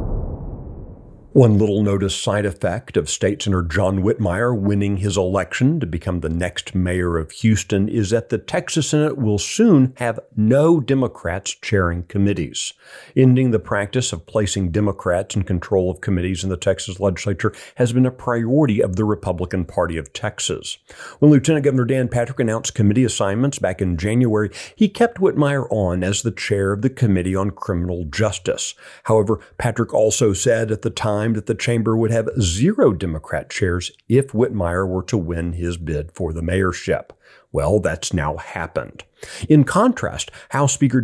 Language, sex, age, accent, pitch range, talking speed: English, male, 40-59, American, 95-120 Hz, 165 wpm